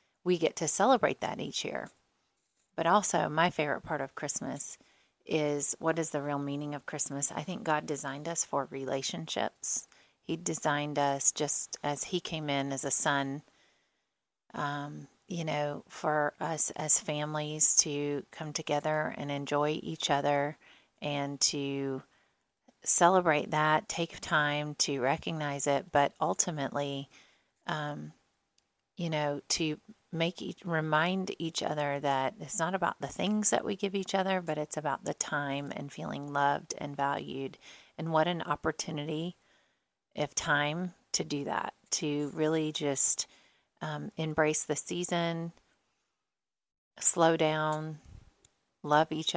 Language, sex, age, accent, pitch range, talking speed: English, female, 30-49, American, 145-165 Hz, 140 wpm